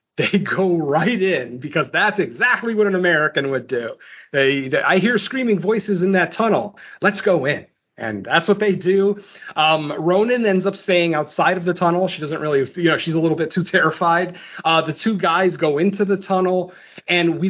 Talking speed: 195 wpm